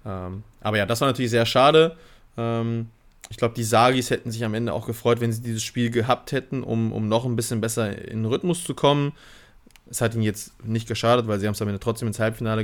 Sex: male